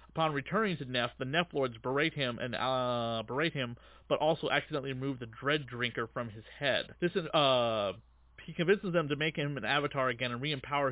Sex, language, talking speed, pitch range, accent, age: male, English, 205 wpm, 120-150 Hz, American, 30-49